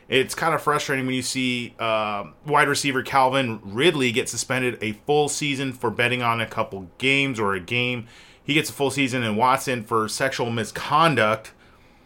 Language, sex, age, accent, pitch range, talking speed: English, male, 30-49, American, 115-145 Hz, 180 wpm